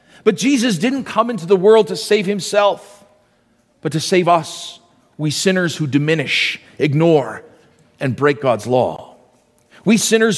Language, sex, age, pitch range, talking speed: English, male, 40-59, 140-180 Hz, 145 wpm